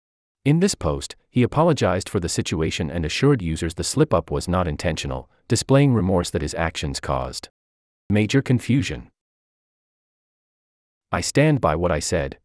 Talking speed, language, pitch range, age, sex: 145 wpm, English, 75-125 Hz, 40-59, male